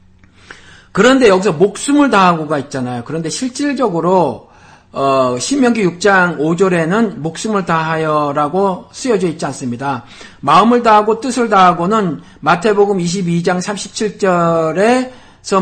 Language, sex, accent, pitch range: Korean, male, native, 145-205 Hz